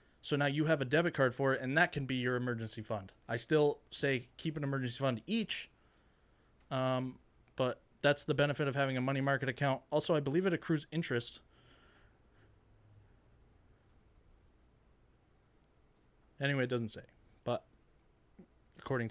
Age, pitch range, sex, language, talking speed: 20-39, 110-135 Hz, male, English, 150 wpm